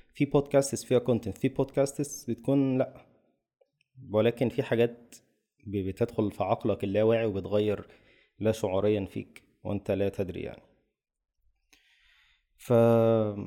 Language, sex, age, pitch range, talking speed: Arabic, male, 20-39, 100-120 Hz, 110 wpm